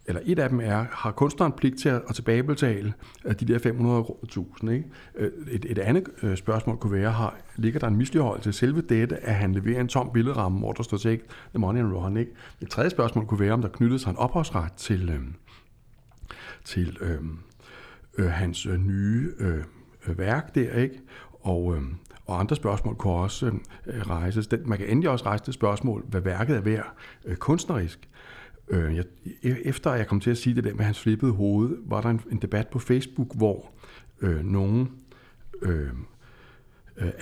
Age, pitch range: 60-79, 100-125 Hz